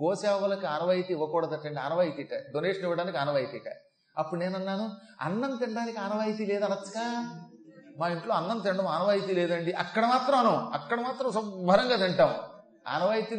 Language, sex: Telugu, male